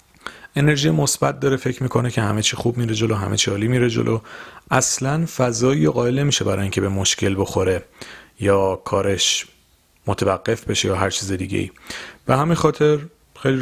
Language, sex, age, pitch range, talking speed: Persian, male, 30-49, 100-125 Hz, 165 wpm